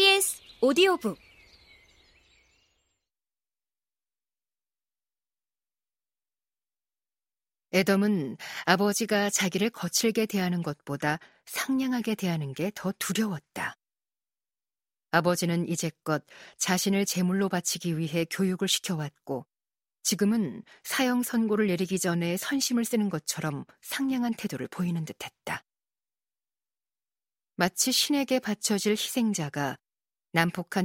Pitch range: 160-205 Hz